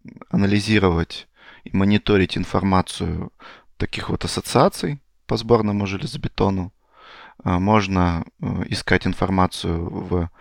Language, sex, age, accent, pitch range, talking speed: Russian, male, 30-49, native, 90-110 Hz, 80 wpm